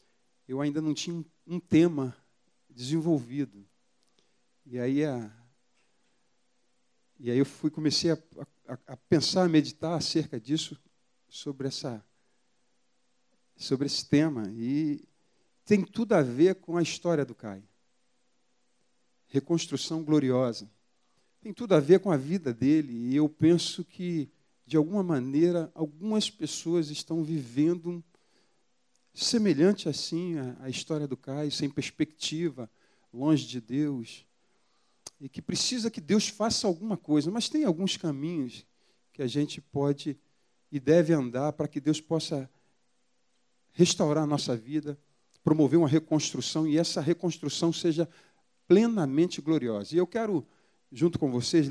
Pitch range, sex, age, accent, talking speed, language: 135-170 Hz, male, 40-59, Brazilian, 130 wpm, Portuguese